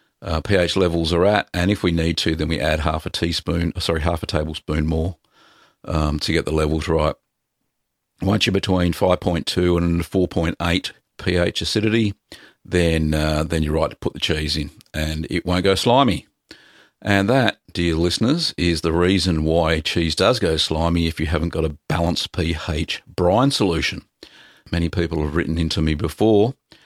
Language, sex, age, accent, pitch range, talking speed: English, male, 50-69, Australian, 80-90 Hz, 175 wpm